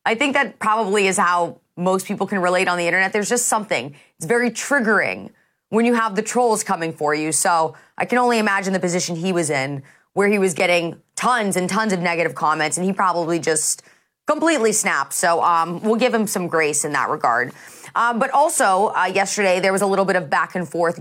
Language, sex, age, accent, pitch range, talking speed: English, female, 30-49, American, 170-220 Hz, 220 wpm